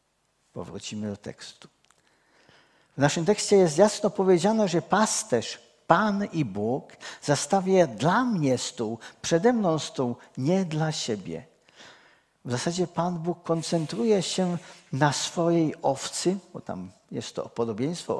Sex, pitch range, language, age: male, 145-180 Hz, Czech, 50-69